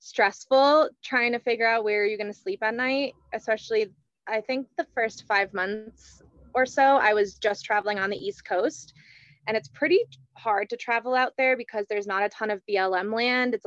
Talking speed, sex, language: 200 wpm, female, English